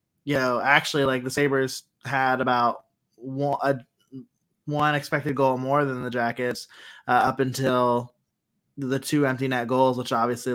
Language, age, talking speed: English, 20-39, 155 wpm